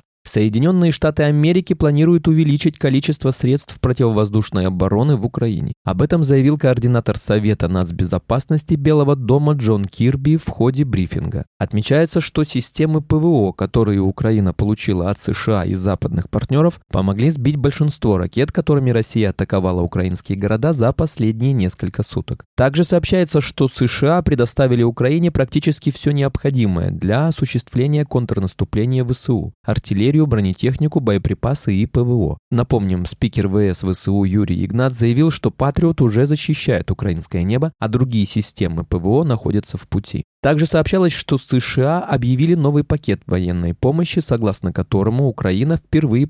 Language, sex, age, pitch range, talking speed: Russian, male, 20-39, 100-150 Hz, 130 wpm